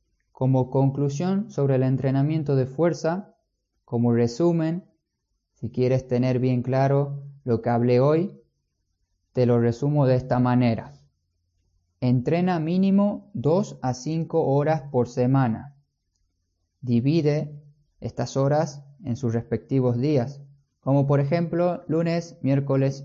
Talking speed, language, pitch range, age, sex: 115 wpm, Spanish, 125-160 Hz, 20-39, male